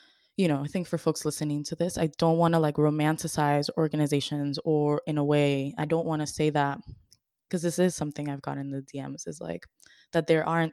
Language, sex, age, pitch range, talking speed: English, female, 20-39, 145-165 Hz, 225 wpm